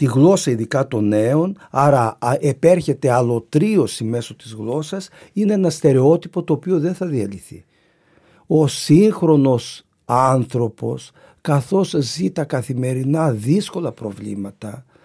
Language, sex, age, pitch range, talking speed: Greek, male, 50-69, 125-175 Hz, 110 wpm